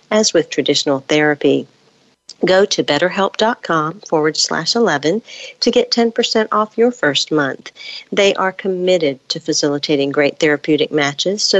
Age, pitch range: 50-69, 150-195 Hz